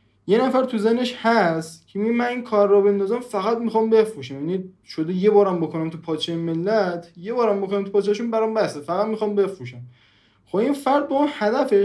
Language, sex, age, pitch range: Persian, male, 20-39, 160-225 Hz